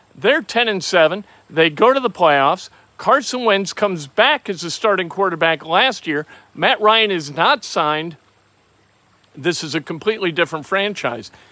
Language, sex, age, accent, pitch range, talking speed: English, male, 50-69, American, 160-210 Hz, 145 wpm